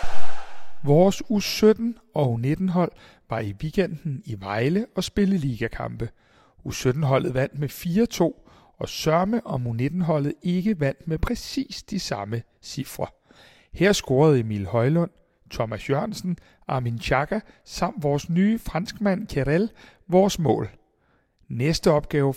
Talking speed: 115 wpm